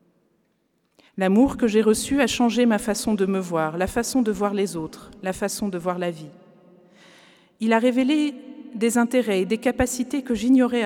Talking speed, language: 180 wpm, French